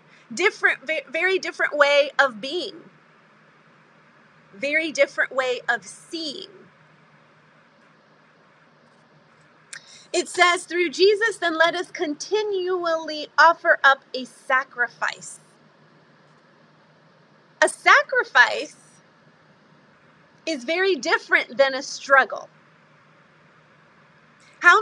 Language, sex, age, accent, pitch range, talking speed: English, female, 30-49, American, 260-335 Hz, 75 wpm